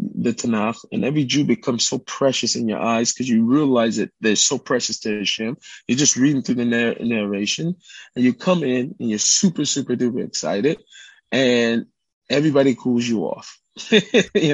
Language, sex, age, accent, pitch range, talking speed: English, male, 20-39, American, 115-140 Hz, 175 wpm